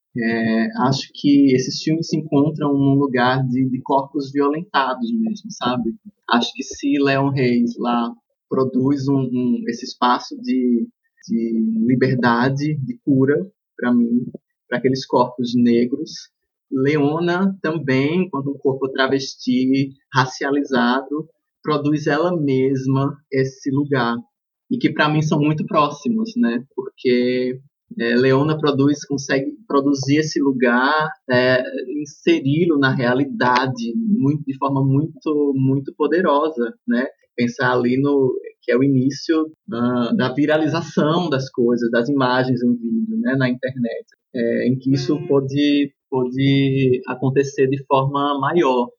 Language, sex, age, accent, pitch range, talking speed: Portuguese, male, 20-39, Brazilian, 125-150 Hz, 130 wpm